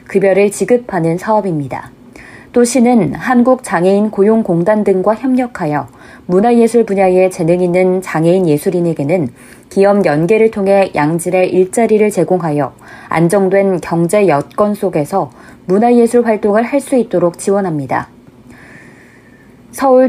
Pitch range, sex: 170-220 Hz, female